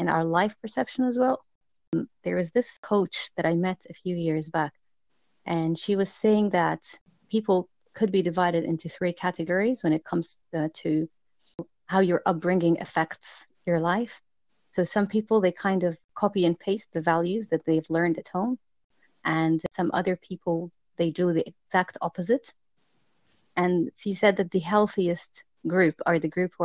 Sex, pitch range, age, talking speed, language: female, 170-210 Hz, 30-49, 175 wpm, English